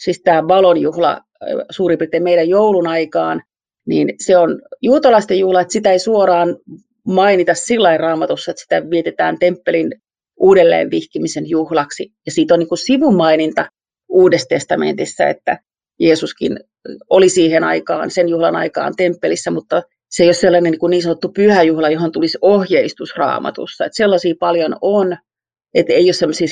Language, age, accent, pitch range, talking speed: Finnish, 40-59, native, 165-205 Hz, 145 wpm